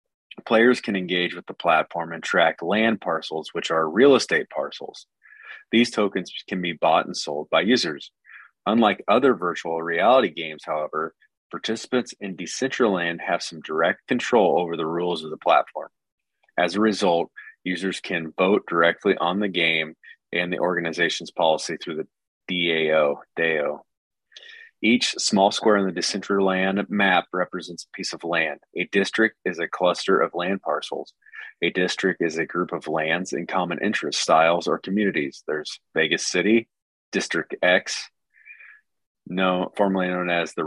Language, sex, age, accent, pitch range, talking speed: English, male, 30-49, American, 85-105 Hz, 150 wpm